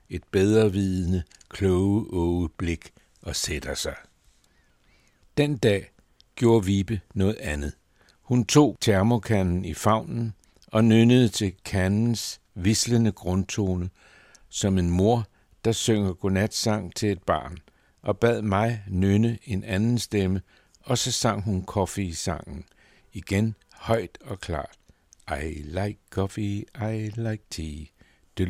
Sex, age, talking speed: male, 60-79, 120 wpm